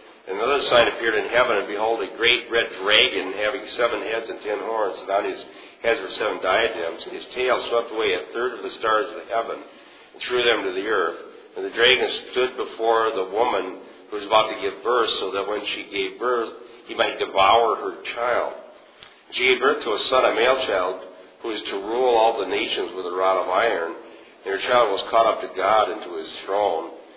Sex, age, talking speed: male, 50-69, 220 wpm